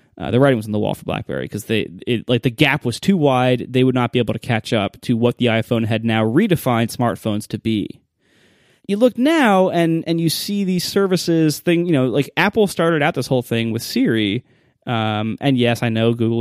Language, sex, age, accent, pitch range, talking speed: English, male, 20-39, American, 110-140 Hz, 230 wpm